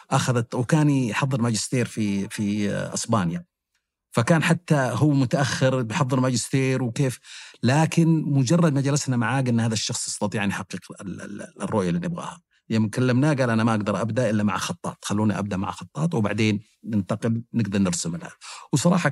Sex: male